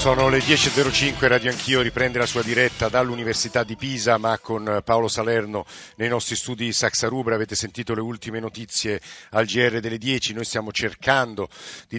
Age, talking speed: 50-69, 170 wpm